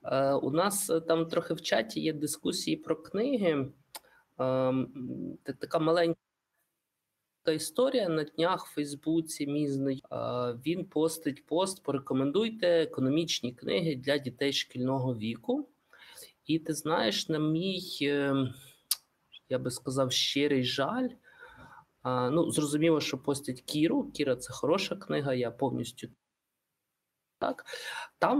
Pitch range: 130-165 Hz